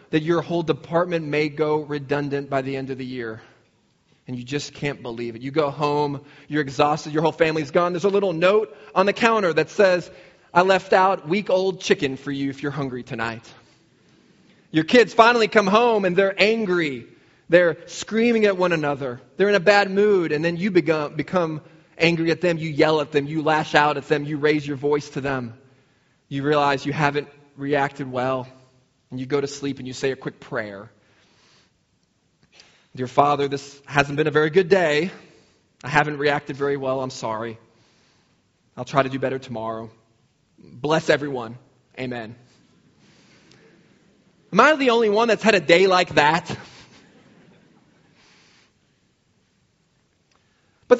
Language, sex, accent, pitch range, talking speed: English, male, American, 135-180 Hz, 170 wpm